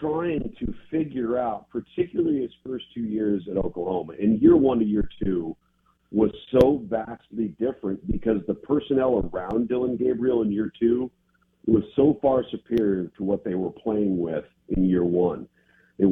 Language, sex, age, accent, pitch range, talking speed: English, male, 50-69, American, 95-115 Hz, 165 wpm